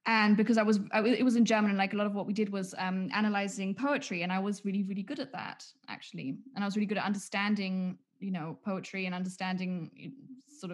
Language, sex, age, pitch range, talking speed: English, female, 10-29, 180-210 Hz, 235 wpm